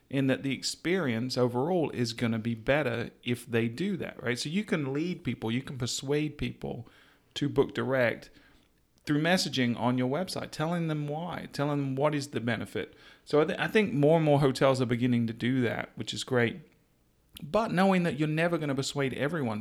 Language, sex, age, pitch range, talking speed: English, male, 40-59, 120-150 Hz, 200 wpm